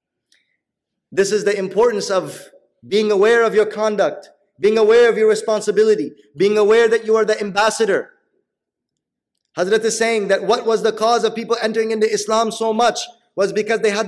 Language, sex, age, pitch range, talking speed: English, male, 30-49, 170-230 Hz, 175 wpm